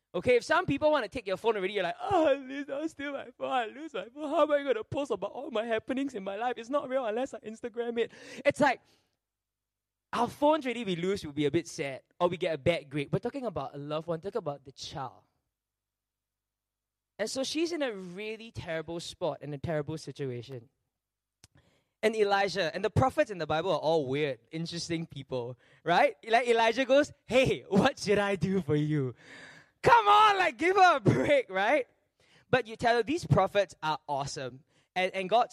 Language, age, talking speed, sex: English, 20-39, 210 wpm, male